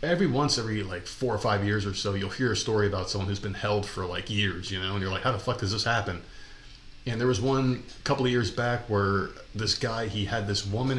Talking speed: 260 wpm